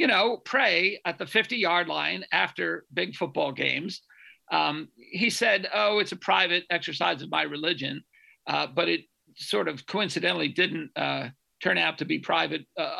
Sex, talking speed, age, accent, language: male, 165 wpm, 50-69, American, English